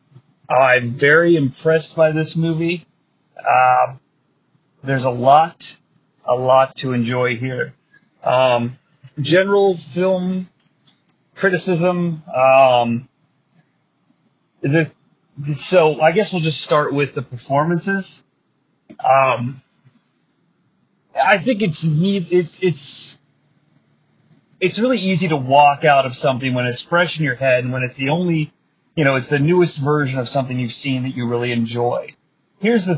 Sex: male